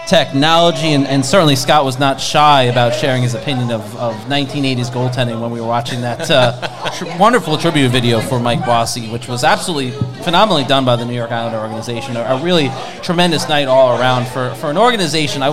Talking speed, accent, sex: 200 wpm, American, male